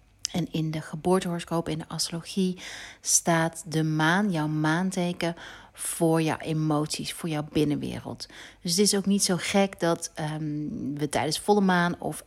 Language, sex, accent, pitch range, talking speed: Dutch, female, Dutch, 150-185 Hz, 155 wpm